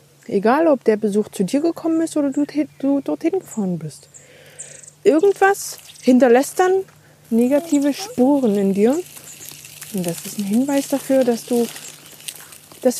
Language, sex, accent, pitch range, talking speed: German, female, German, 220-315 Hz, 140 wpm